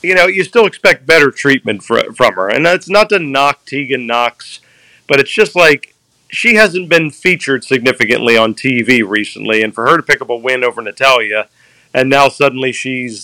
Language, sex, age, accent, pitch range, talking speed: English, male, 40-59, American, 125-160 Hz, 195 wpm